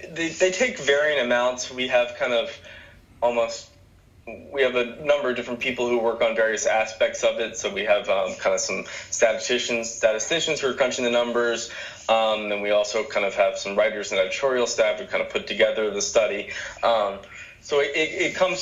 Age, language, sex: 20-39, English, male